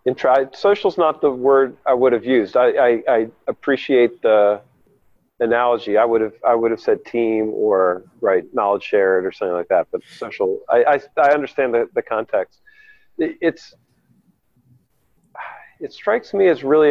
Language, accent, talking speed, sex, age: English, American, 175 wpm, male, 40-59